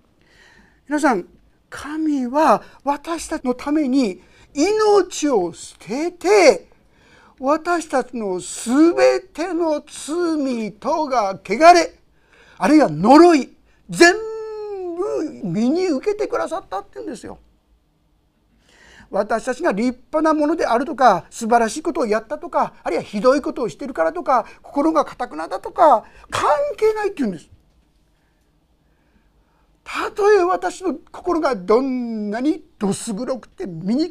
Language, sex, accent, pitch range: Japanese, male, native, 250-345 Hz